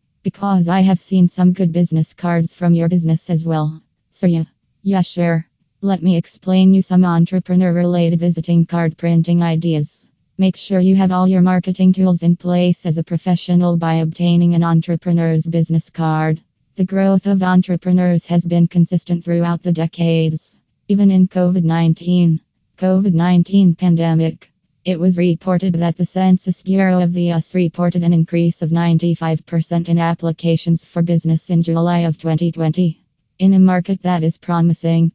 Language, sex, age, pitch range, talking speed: English, female, 20-39, 165-180 Hz, 155 wpm